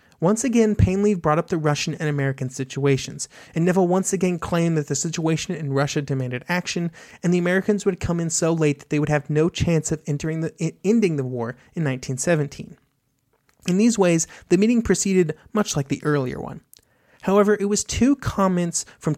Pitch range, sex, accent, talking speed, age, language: 145-190 Hz, male, American, 195 wpm, 30-49, English